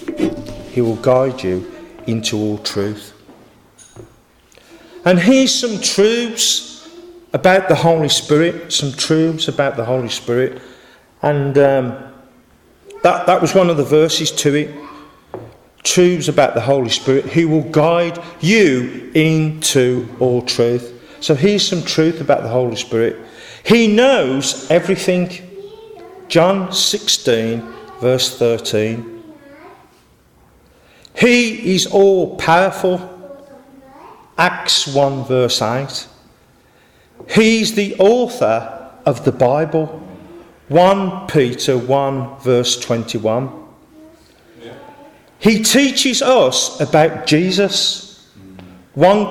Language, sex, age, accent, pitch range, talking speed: English, male, 40-59, British, 125-195 Hz, 100 wpm